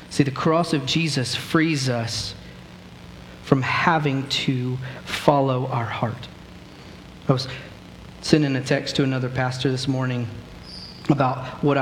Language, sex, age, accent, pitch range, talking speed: English, male, 40-59, American, 130-150 Hz, 125 wpm